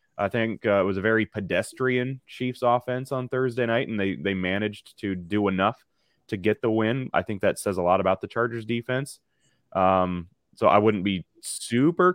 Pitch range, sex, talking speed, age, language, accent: 95-125 Hz, male, 200 wpm, 20-39, English, American